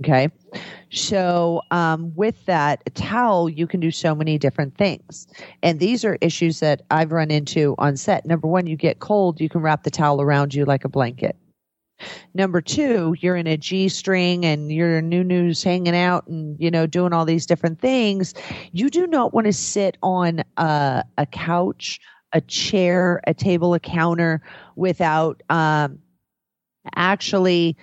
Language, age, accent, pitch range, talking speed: English, 40-59, American, 155-190 Hz, 170 wpm